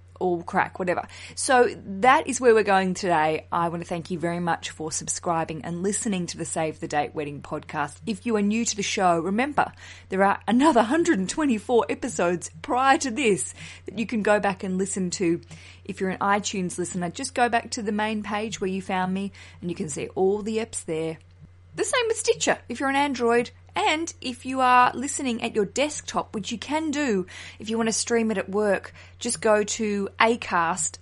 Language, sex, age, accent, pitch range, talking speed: English, female, 20-39, Australian, 170-225 Hz, 210 wpm